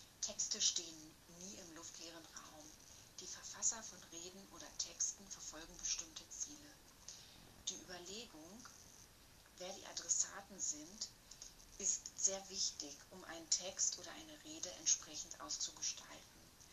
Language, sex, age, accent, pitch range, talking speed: German, female, 30-49, German, 165-190 Hz, 115 wpm